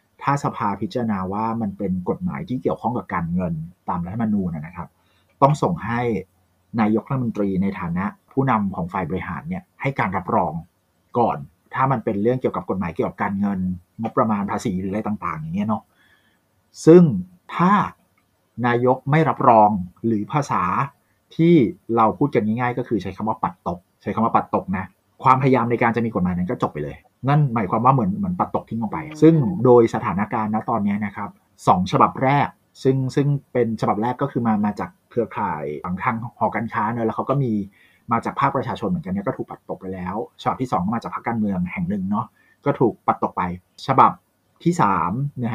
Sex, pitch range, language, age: male, 100-135 Hz, Thai, 30-49